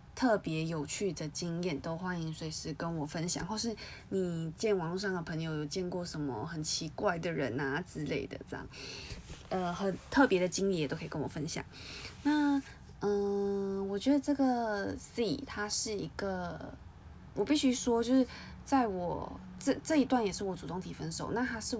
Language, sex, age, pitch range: Chinese, female, 20-39, 165-210 Hz